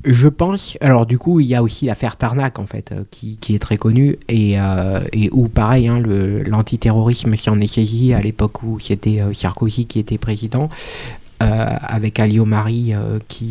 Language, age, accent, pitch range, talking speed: French, 20-39, French, 115-145 Hz, 205 wpm